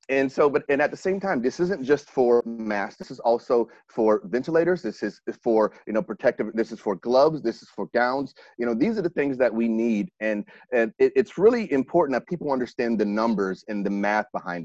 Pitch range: 110-140 Hz